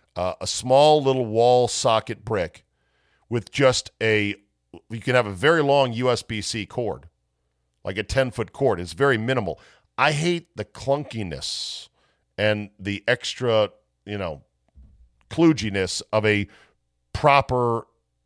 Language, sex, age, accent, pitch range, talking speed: English, male, 50-69, American, 95-130 Hz, 125 wpm